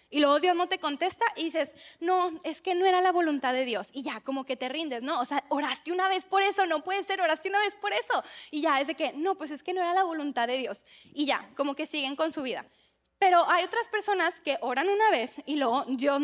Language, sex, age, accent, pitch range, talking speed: Spanish, female, 10-29, Mexican, 305-370 Hz, 270 wpm